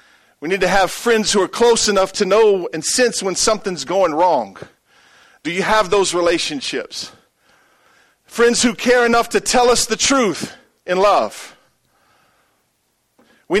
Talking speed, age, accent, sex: 150 wpm, 40-59, American, male